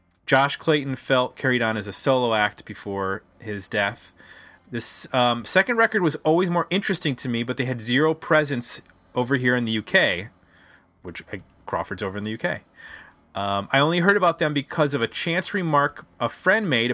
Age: 30-49